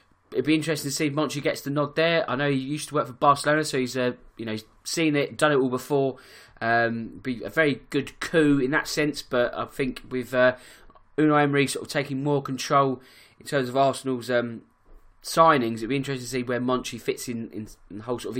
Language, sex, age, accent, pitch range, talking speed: English, male, 20-39, British, 115-150 Hz, 235 wpm